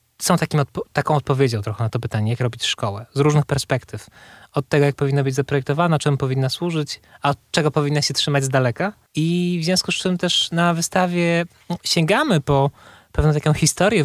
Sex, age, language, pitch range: male, 20-39, Polish, 130-155 Hz